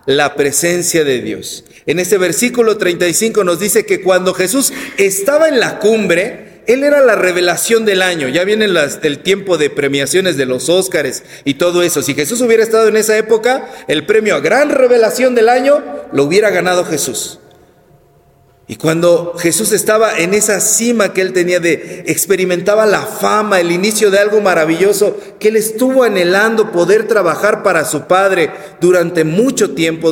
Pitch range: 170-245 Hz